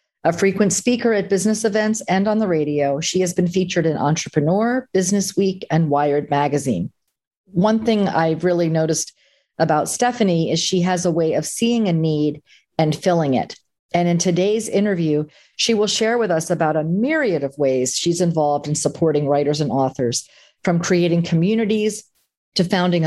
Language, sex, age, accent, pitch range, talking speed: English, female, 40-59, American, 155-195 Hz, 170 wpm